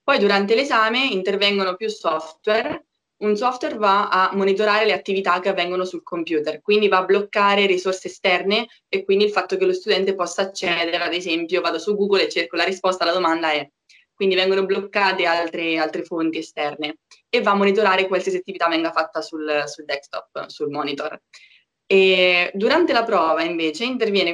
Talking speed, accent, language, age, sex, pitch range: 175 wpm, native, Italian, 20-39, female, 165-205 Hz